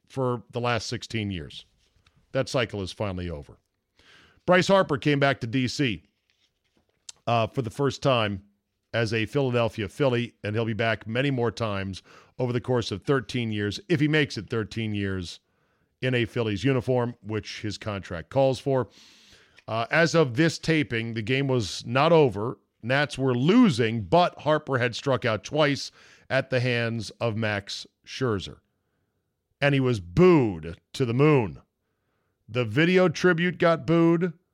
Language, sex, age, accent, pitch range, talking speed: English, male, 50-69, American, 110-155 Hz, 155 wpm